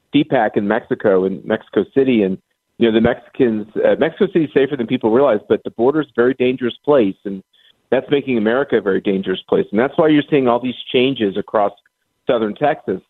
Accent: American